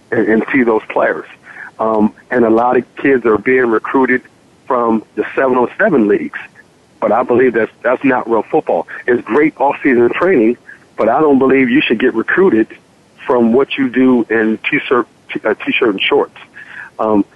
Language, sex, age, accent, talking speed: English, male, 50-69, American, 175 wpm